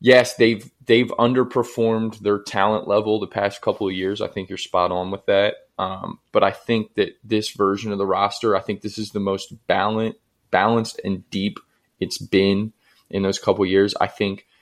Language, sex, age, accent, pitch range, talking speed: English, male, 20-39, American, 100-125 Hz, 195 wpm